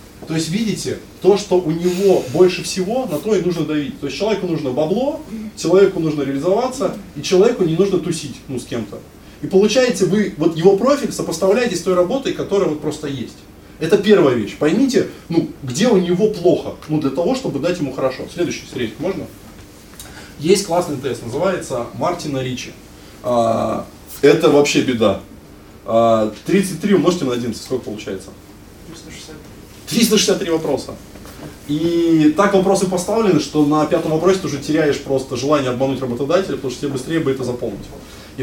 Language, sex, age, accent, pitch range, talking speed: Russian, male, 20-39, native, 125-185 Hz, 165 wpm